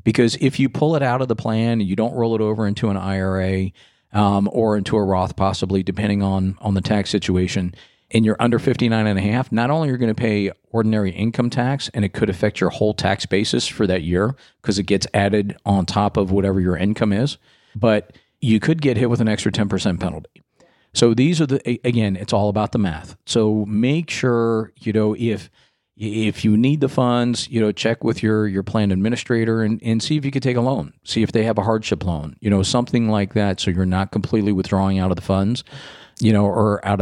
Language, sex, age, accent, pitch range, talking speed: English, male, 50-69, American, 100-120 Hz, 230 wpm